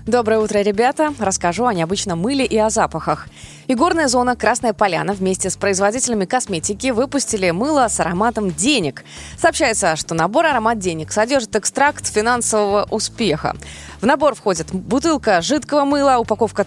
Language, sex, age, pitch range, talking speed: Russian, female, 20-39, 190-260 Hz, 140 wpm